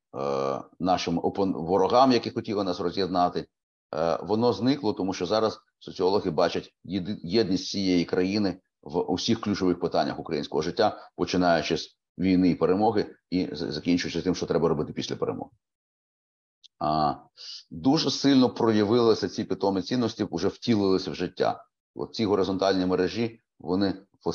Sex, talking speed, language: male, 125 wpm, Ukrainian